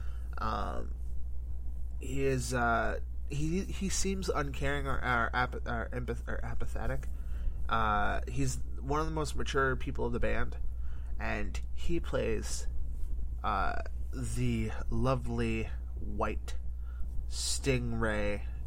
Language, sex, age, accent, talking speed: English, male, 20-39, American, 110 wpm